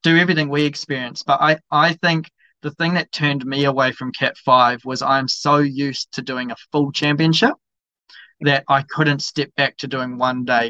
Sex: male